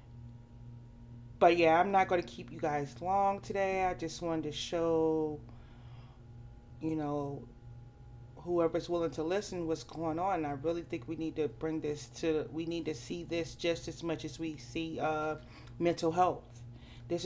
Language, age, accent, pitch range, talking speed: English, 30-49, American, 120-170 Hz, 170 wpm